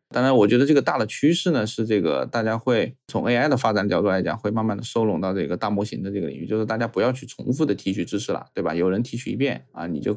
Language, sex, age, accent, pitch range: Chinese, male, 20-39, native, 105-120 Hz